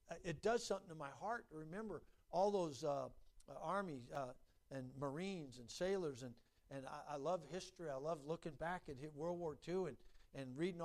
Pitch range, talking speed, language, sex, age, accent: 150-195 Hz, 190 wpm, English, male, 60-79, American